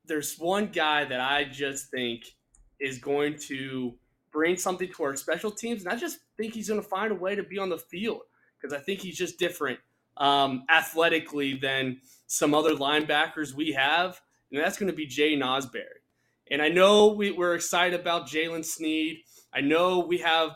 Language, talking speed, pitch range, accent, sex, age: English, 190 wpm, 140-175 Hz, American, male, 20-39